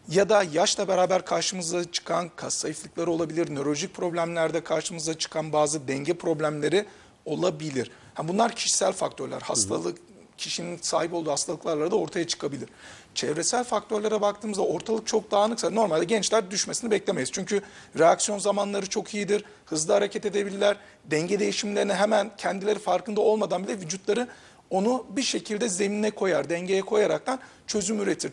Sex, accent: male, native